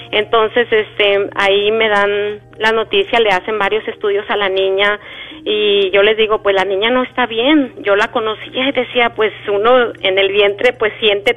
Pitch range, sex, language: 200-230 Hz, female, Spanish